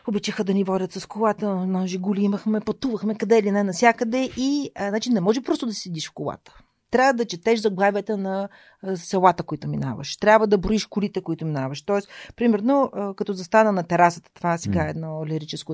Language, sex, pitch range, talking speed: Bulgarian, female, 175-215 Hz, 185 wpm